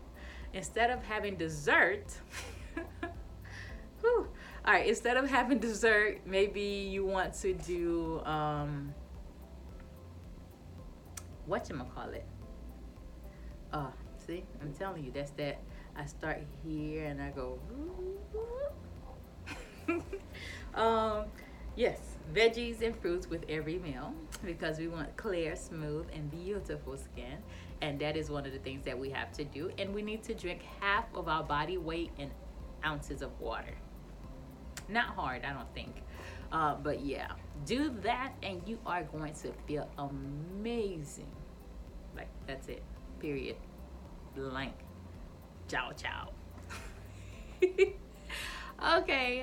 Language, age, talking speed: English, 20-39, 120 wpm